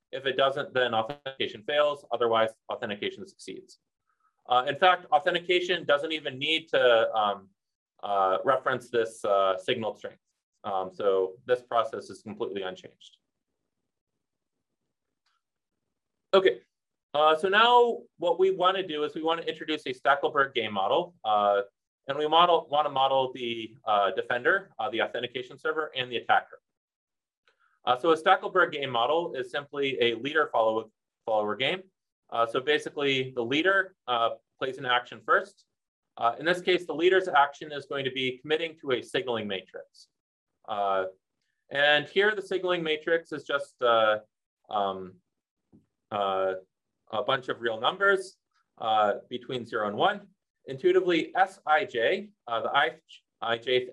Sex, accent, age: male, American, 30-49